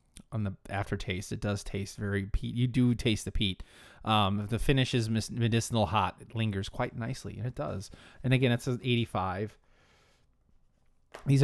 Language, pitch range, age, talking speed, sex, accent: English, 105-135 Hz, 30-49, 165 wpm, male, American